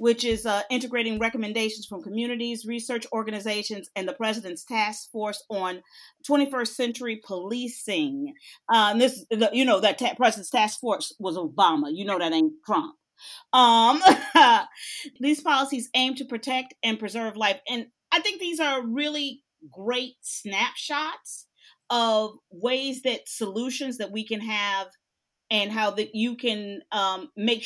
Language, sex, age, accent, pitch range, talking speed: English, female, 40-59, American, 215-265 Hz, 140 wpm